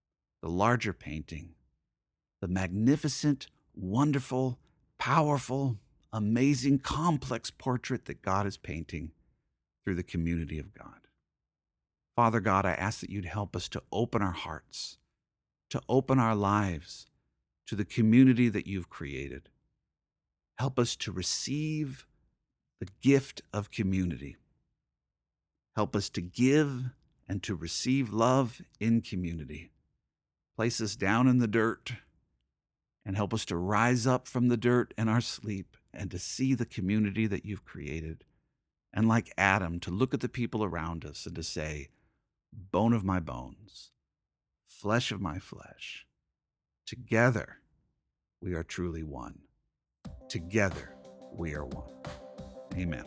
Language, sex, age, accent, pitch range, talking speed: English, male, 50-69, American, 80-120 Hz, 130 wpm